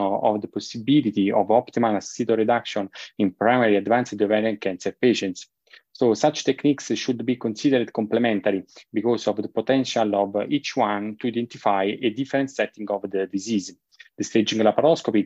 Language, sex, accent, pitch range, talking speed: English, male, Italian, 105-125 Hz, 150 wpm